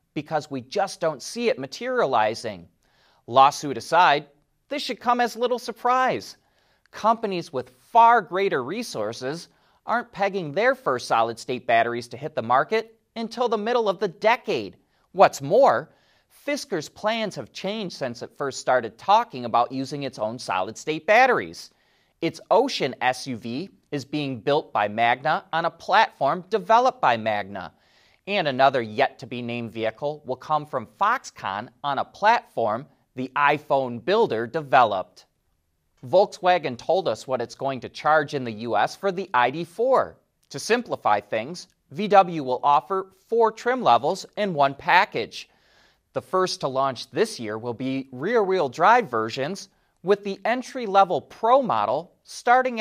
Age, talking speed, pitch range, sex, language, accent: 30-49, 140 wpm, 130-205 Hz, male, English, American